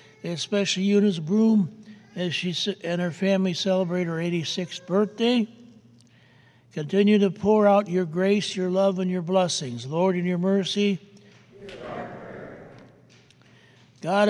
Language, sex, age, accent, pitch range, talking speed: English, male, 60-79, American, 175-200 Hz, 120 wpm